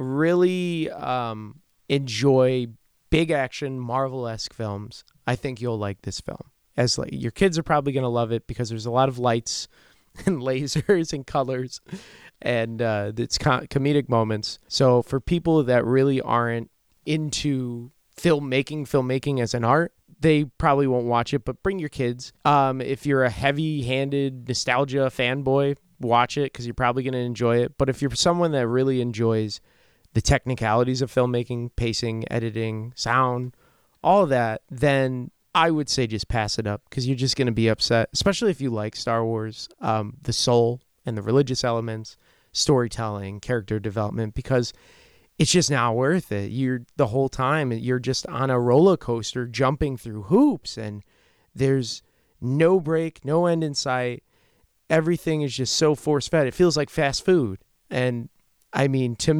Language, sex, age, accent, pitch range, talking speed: English, male, 20-39, American, 120-145 Hz, 165 wpm